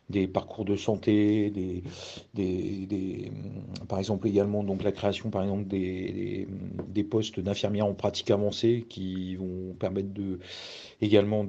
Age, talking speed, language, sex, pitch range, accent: 40-59, 105 wpm, French, male, 95-110 Hz, French